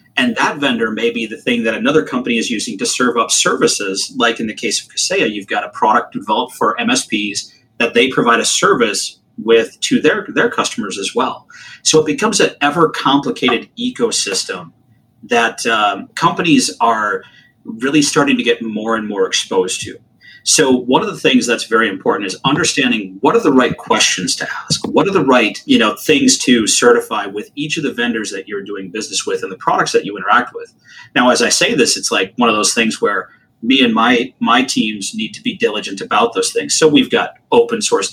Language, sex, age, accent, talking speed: English, male, 30-49, American, 205 wpm